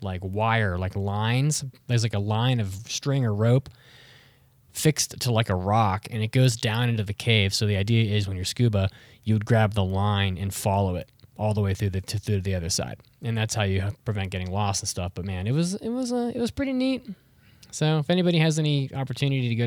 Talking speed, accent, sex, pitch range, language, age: 235 wpm, American, male, 100-135 Hz, English, 20-39